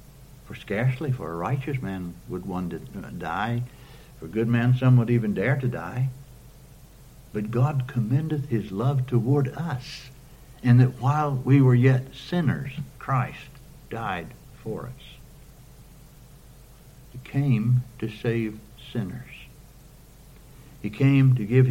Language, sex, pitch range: English, male, 110-135 Hz